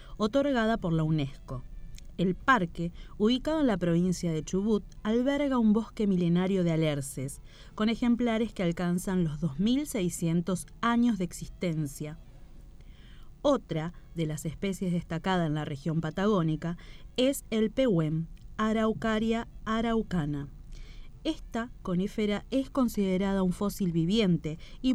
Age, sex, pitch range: 30-49, female, 165-220 Hz